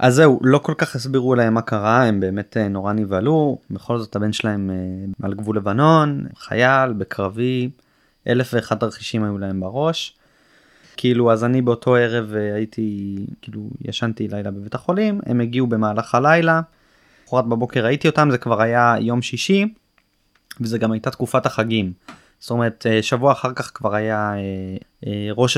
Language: Hebrew